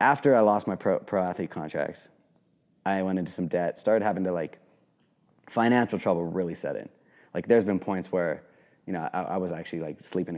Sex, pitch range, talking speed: male, 90-110 Hz, 190 wpm